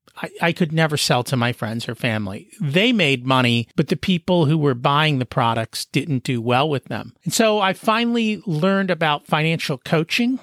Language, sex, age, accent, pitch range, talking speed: English, male, 40-59, American, 140-190 Hz, 190 wpm